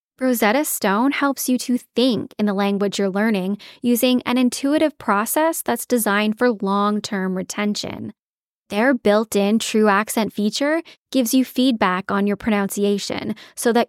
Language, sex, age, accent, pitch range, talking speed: English, female, 10-29, American, 205-255 Hz, 145 wpm